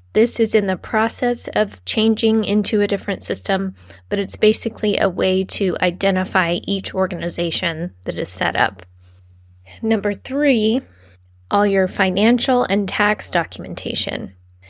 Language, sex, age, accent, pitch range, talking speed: English, female, 20-39, American, 165-215 Hz, 130 wpm